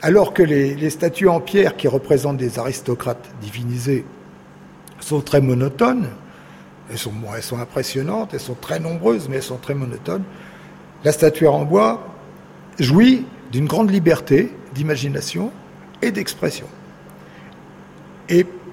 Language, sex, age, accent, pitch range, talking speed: French, male, 60-79, French, 135-180 Hz, 130 wpm